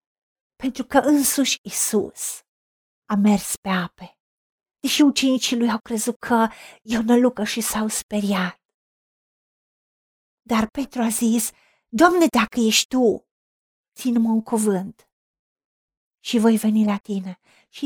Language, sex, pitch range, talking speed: Romanian, female, 210-255 Hz, 125 wpm